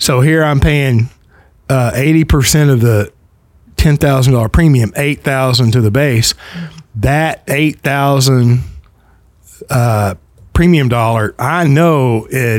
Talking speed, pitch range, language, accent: 130 wpm, 115-155 Hz, English, American